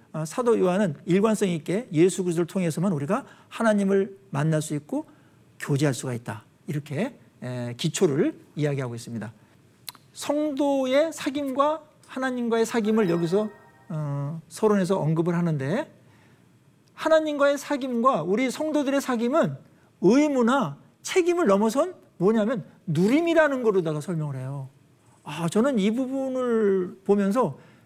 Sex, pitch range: male, 160-265 Hz